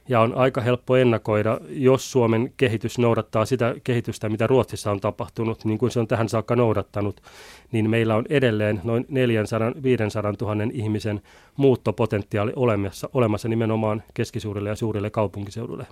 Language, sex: Finnish, male